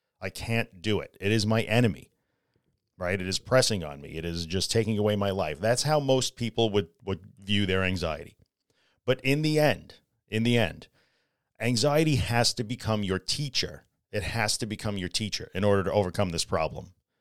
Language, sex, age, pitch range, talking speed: English, male, 40-59, 100-120 Hz, 190 wpm